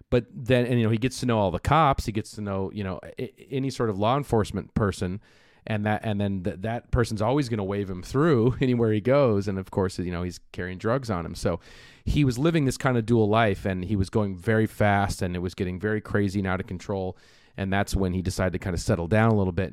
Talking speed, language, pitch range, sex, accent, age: 270 wpm, English, 100-125 Hz, male, American, 30-49